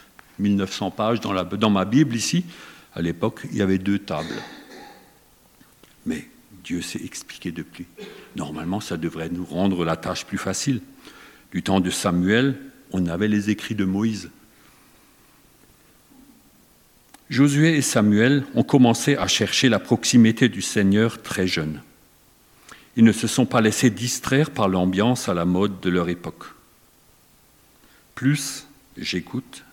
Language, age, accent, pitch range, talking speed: French, 50-69, French, 90-120 Hz, 140 wpm